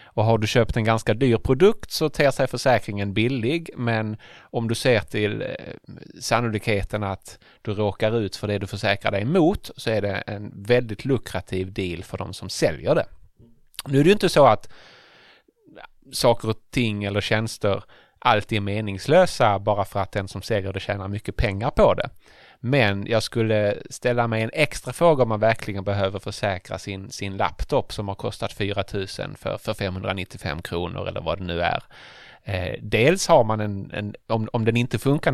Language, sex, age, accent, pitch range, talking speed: English, male, 30-49, Norwegian, 100-120 Hz, 185 wpm